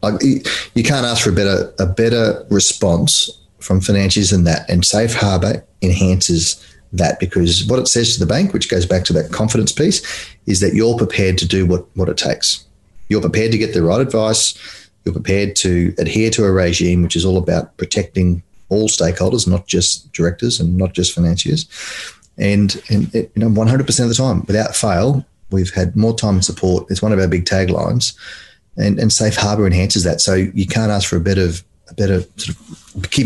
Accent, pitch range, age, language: Australian, 90-110 Hz, 30-49, English